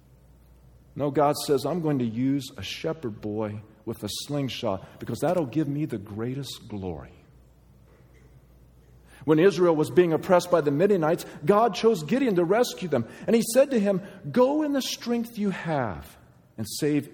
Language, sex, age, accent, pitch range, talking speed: English, male, 50-69, American, 125-200 Hz, 170 wpm